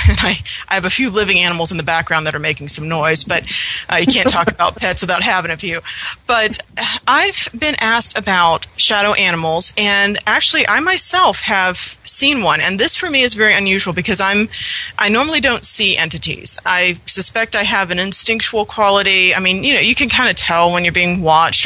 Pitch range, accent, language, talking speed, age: 170-220 Hz, American, English, 210 wpm, 30-49